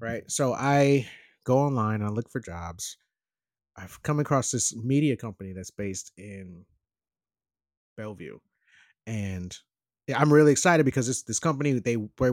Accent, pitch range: American, 110-175 Hz